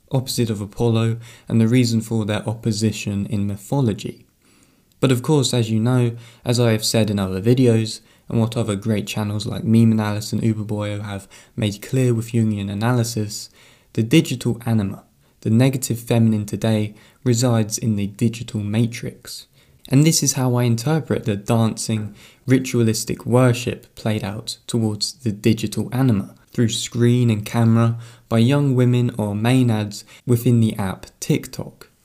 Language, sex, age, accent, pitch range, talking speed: English, male, 20-39, British, 105-125 Hz, 155 wpm